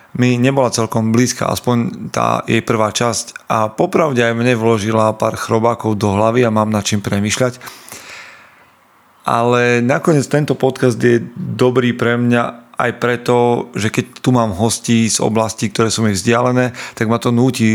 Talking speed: 160 wpm